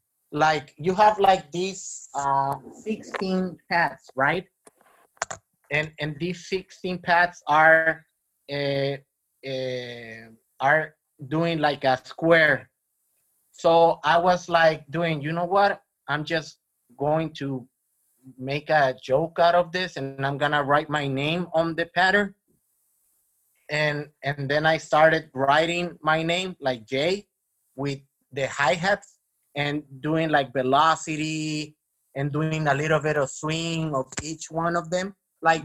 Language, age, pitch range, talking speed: English, 30-49, 140-175 Hz, 135 wpm